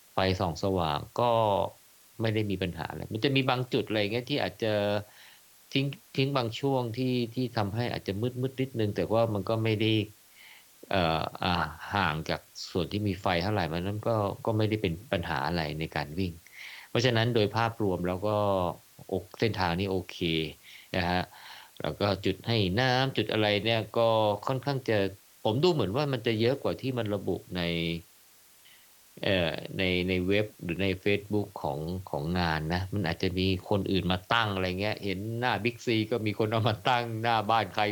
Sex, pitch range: male, 95-115 Hz